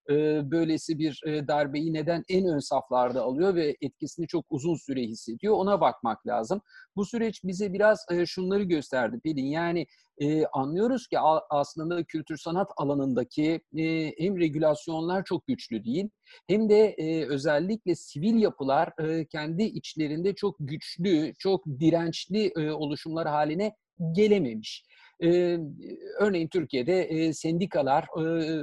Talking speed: 110 wpm